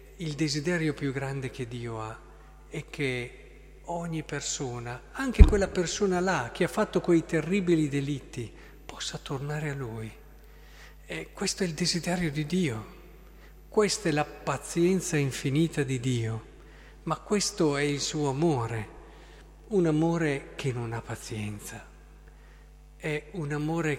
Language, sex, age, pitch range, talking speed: Italian, male, 50-69, 130-165 Hz, 135 wpm